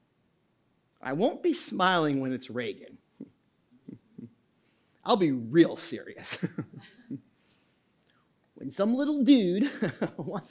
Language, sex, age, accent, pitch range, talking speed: English, male, 40-59, American, 190-265 Hz, 90 wpm